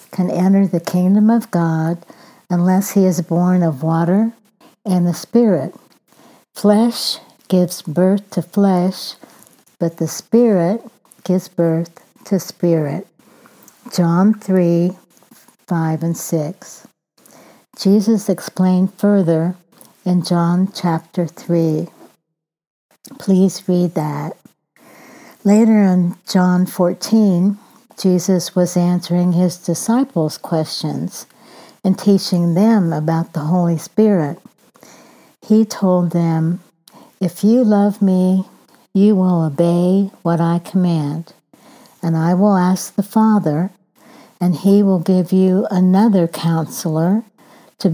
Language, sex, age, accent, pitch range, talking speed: English, female, 60-79, American, 170-205 Hz, 110 wpm